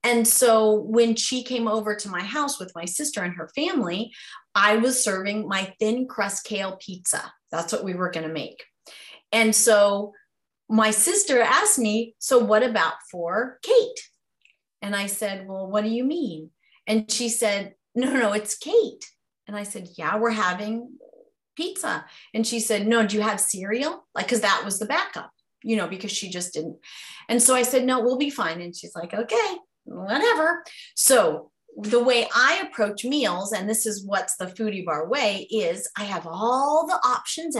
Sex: female